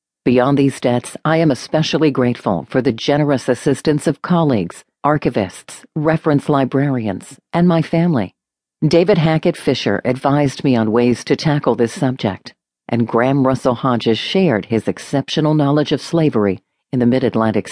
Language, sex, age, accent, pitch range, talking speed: English, female, 50-69, American, 120-160 Hz, 145 wpm